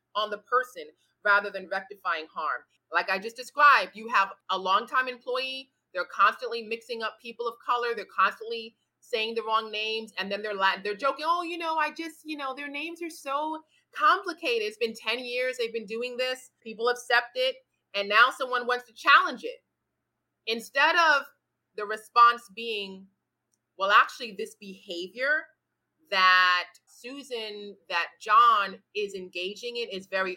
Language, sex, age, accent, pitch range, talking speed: English, female, 30-49, American, 205-310 Hz, 160 wpm